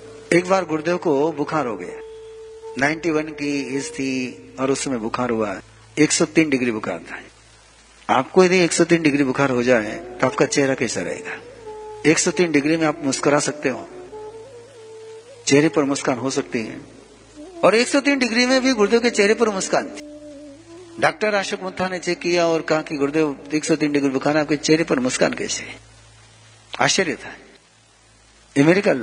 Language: Hindi